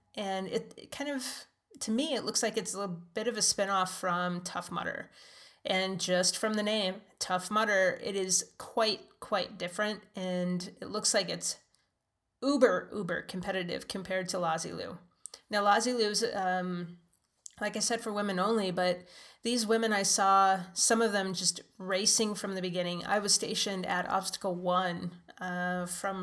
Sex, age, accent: female, 30-49, American